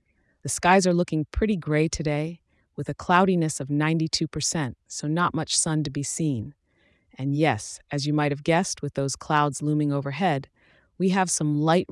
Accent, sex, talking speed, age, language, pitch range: American, female, 175 wpm, 40-59, English, 140-170 Hz